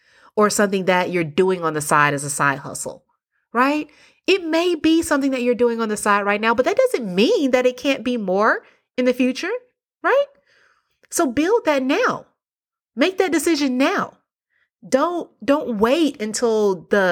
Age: 30-49